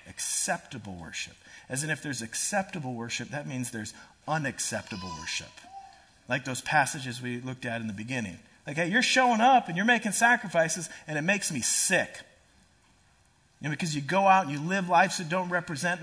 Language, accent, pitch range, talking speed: English, American, 130-215 Hz, 185 wpm